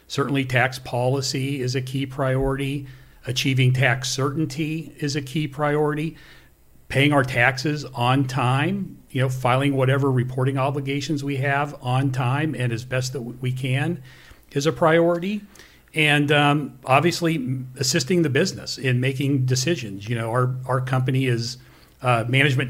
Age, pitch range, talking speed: 40-59, 125-140 Hz, 145 wpm